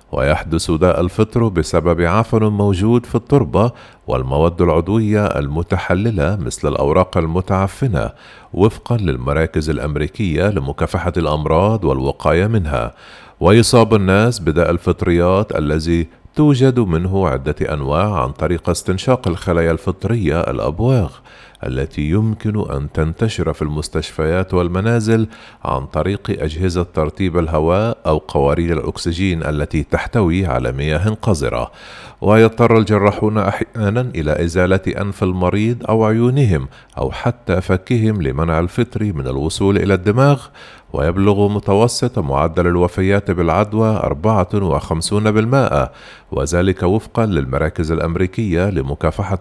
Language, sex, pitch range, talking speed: Arabic, male, 80-105 Hz, 105 wpm